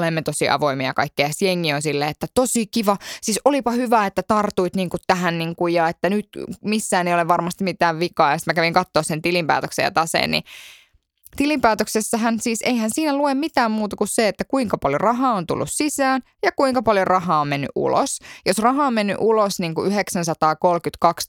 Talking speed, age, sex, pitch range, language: 190 wpm, 20-39, female, 155-215 Hz, Finnish